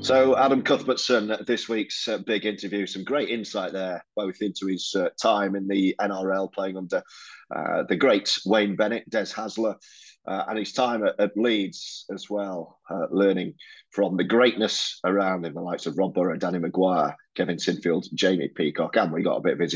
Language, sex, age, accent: English, male, 30-49, British